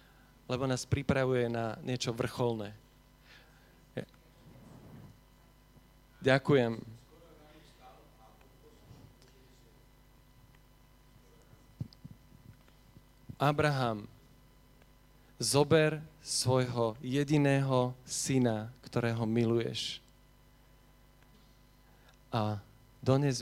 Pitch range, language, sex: 120-140 Hz, Slovak, male